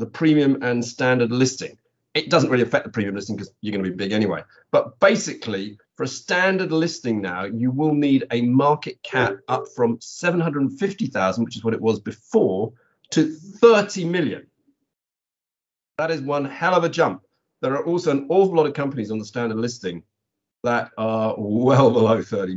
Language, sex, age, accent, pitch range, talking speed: English, male, 40-59, British, 110-155 Hz, 180 wpm